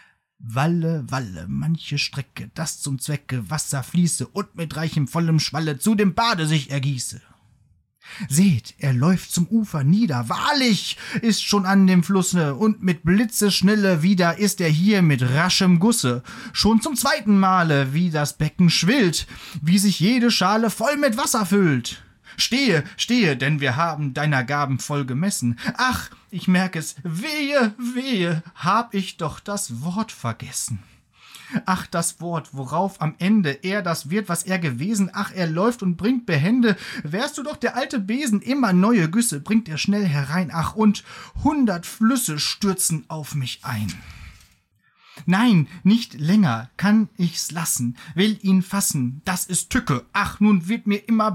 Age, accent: 30-49, German